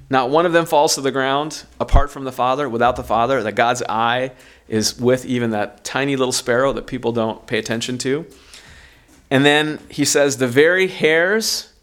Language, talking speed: English, 195 wpm